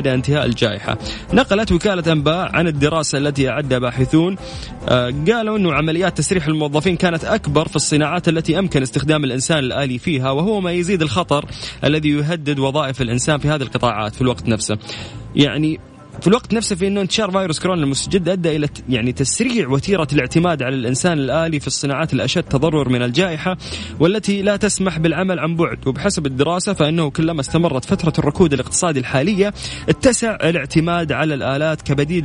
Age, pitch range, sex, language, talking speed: 20-39, 130-165 Hz, male, Arabic, 155 wpm